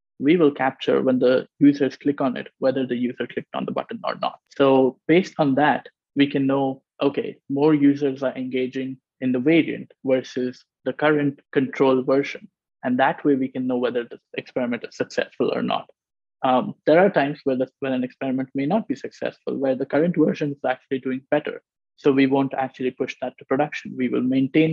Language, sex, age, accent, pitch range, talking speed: English, male, 20-39, Indian, 130-145 Hz, 195 wpm